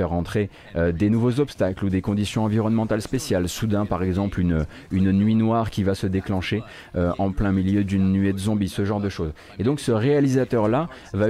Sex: male